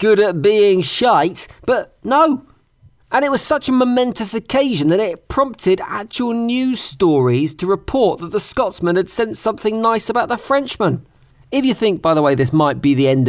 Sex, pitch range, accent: male, 140-225 Hz, British